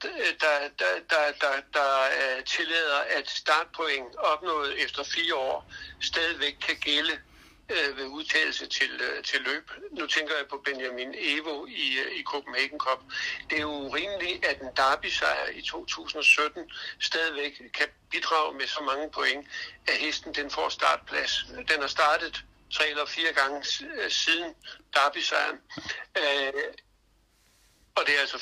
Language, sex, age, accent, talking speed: Danish, male, 60-79, native, 150 wpm